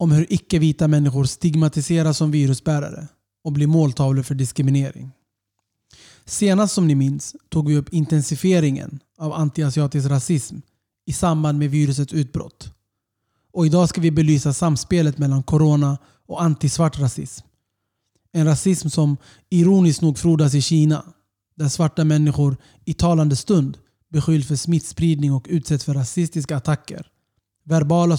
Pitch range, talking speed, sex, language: 135-160 Hz, 130 wpm, male, Swedish